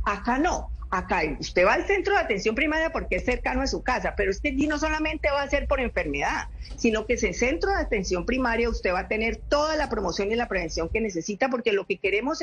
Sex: female